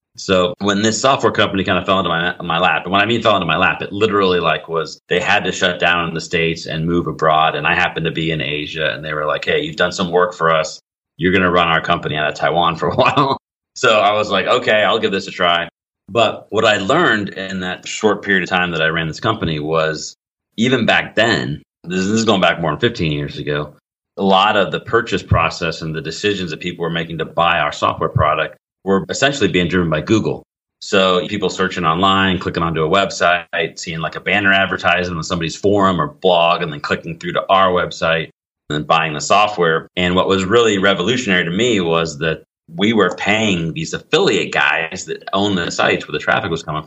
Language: English